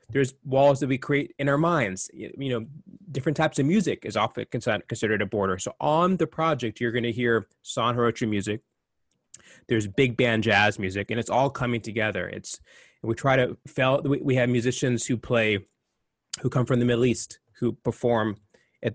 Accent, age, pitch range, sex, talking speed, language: American, 20-39, 115-140 Hz, male, 185 wpm, English